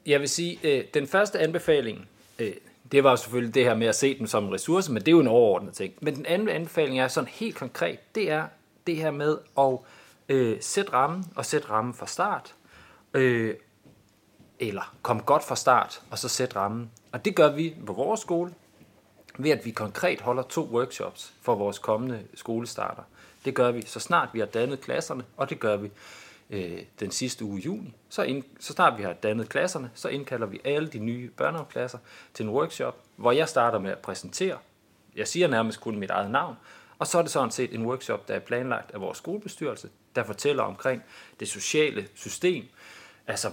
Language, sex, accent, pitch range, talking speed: Danish, male, native, 110-150 Hz, 195 wpm